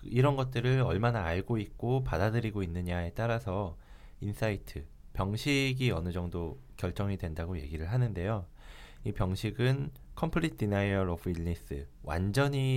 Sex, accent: male, native